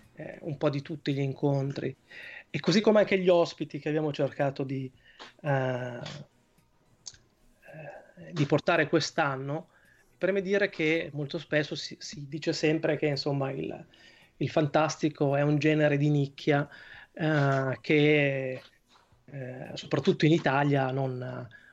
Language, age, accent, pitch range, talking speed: Italian, 20-39, native, 135-155 Hz, 135 wpm